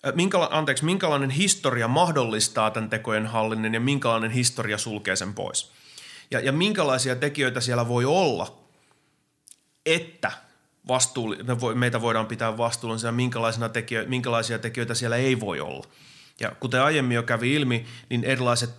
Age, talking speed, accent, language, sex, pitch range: 30-49, 135 wpm, native, Finnish, male, 110-135 Hz